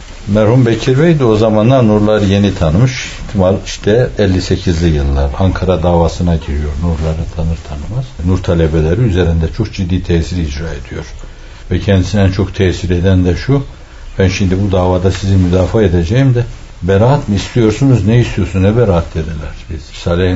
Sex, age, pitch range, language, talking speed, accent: male, 60-79, 85-110 Hz, Turkish, 155 wpm, native